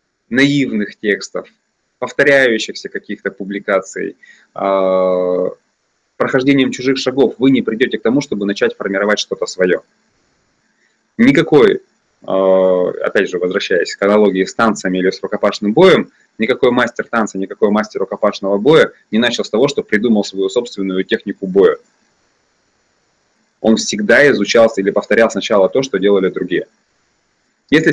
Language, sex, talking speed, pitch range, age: Russian, male, 125 wpm, 100-135 Hz, 20-39